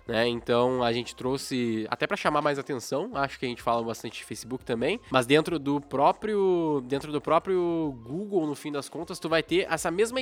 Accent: Brazilian